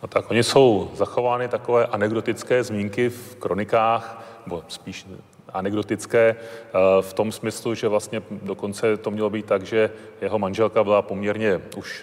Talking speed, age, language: 145 wpm, 30-49, Czech